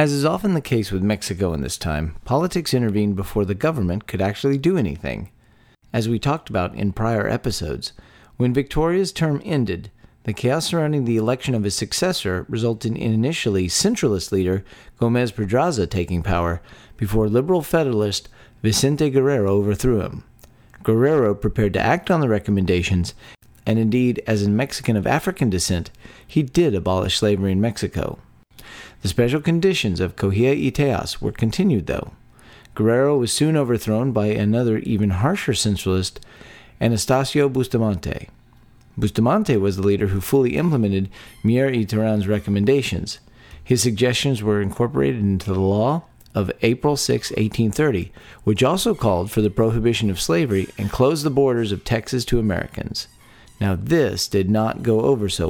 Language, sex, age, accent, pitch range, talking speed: English, male, 40-59, American, 100-130 Hz, 150 wpm